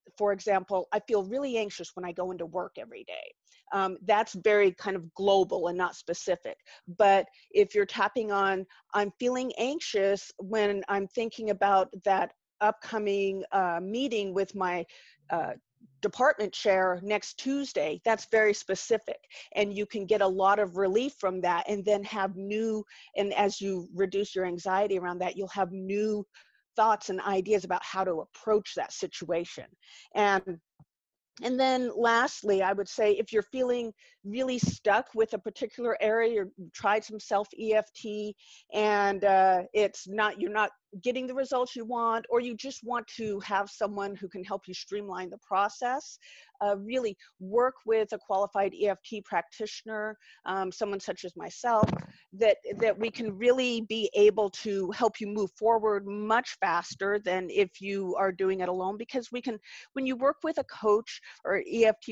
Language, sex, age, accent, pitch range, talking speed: English, female, 40-59, American, 195-225 Hz, 165 wpm